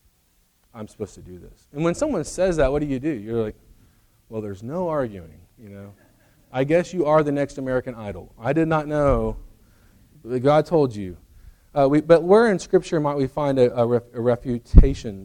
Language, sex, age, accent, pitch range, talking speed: English, male, 40-59, American, 115-175 Hz, 195 wpm